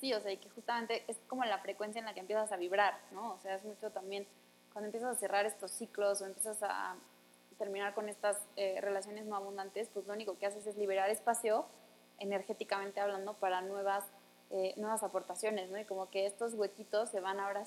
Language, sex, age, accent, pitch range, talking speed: Spanish, female, 20-39, Mexican, 190-215 Hz, 210 wpm